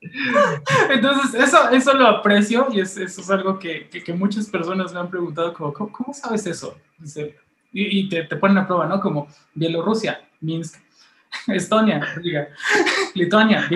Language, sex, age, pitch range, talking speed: Spanish, male, 20-39, 155-210 Hz, 155 wpm